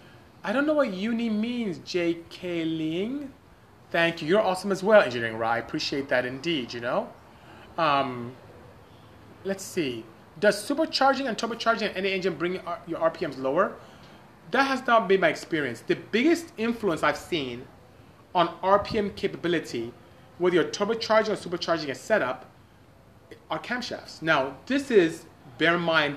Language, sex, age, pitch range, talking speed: English, male, 30-49, 130-195 Hz, 150 wpm